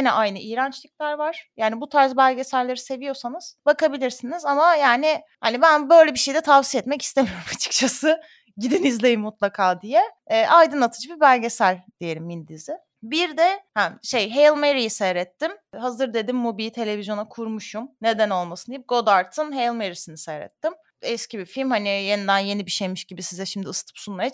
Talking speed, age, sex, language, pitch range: 160 wpm, 30-49, female, Turkish, 205-295 Hz